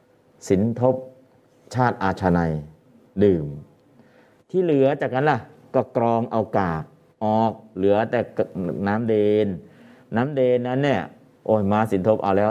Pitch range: 95-115 Hz